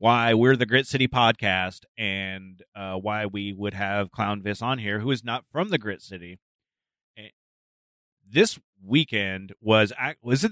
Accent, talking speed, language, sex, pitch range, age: American, 155 wpm, English, male, 100-125 Hz, 30-49